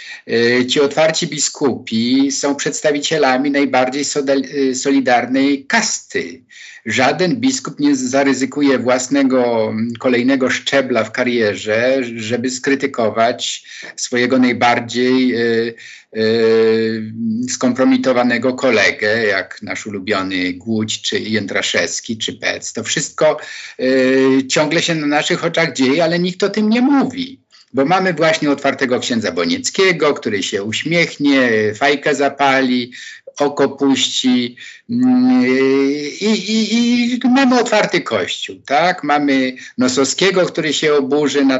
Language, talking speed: Polish, 100 wpm